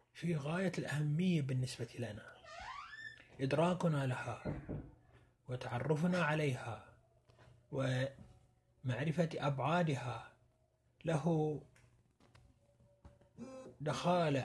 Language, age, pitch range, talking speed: Arabic, 30-49, 120-155 Hz, 55 wpm